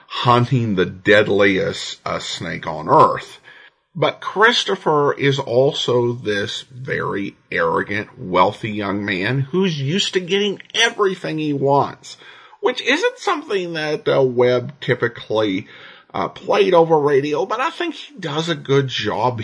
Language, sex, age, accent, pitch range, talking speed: English, male, 50-69, American, 105-155 Hz, 135 wpm